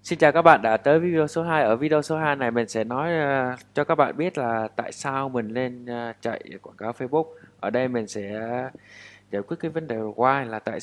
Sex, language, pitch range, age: male, Vietnamese, 115-150 Hz, 20-39